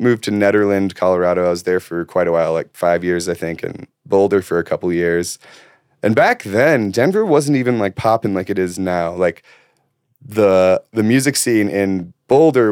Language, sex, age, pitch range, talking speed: English, male, 30-49, 90-110 Hz, 195 wpm